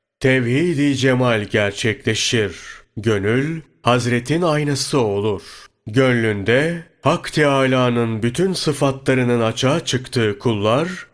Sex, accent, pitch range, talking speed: male, native, 110-140 Hz, 80 wpm